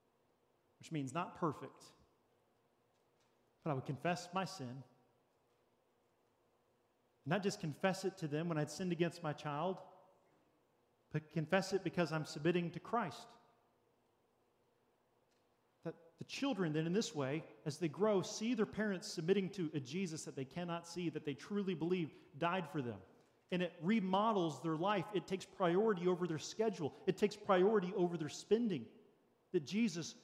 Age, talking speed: 40-59, 155 wpm